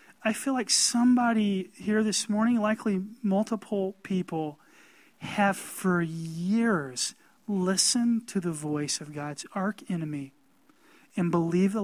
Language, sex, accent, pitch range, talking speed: English, male, American, 195-270 Hz, 115 wpm